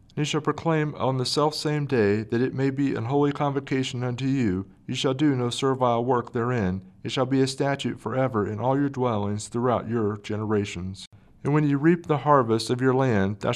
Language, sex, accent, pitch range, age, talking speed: English, male, American, 110-140 Hz, 50-69, 215 wpm